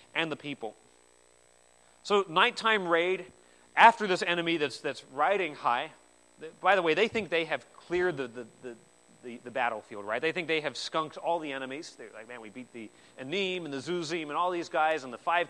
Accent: American